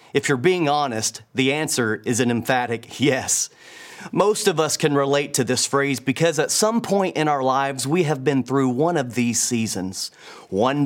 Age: 30-49